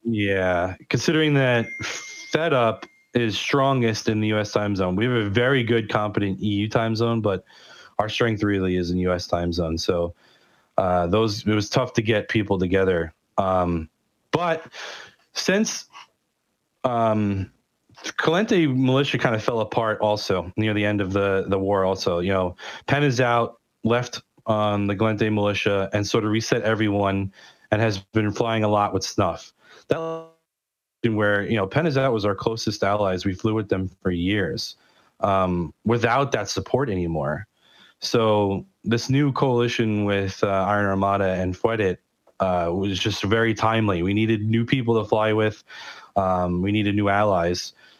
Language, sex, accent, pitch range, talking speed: English, male, American, 95-115 Hz, 160 wpm